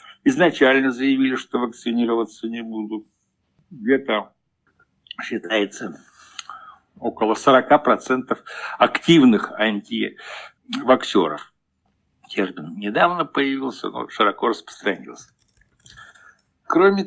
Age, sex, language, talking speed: 60-79, male, Russian, 65 wpm